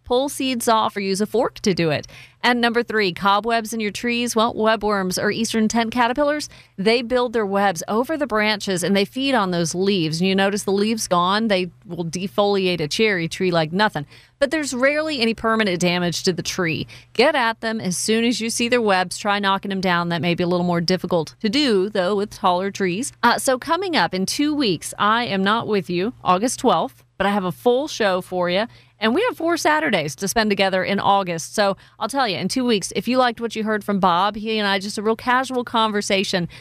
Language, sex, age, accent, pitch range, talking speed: English, female, 40-59, American, 185-230 Hz, 230 wpm